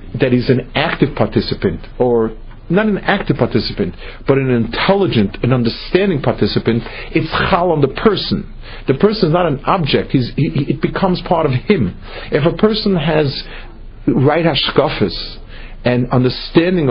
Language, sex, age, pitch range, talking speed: English, male, 50-69, 120-175 Hz, 150 wpm